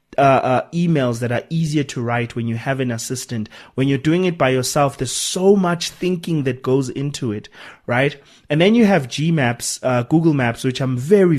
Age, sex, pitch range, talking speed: 30-49, male, 120-155 Hz, 210 wpm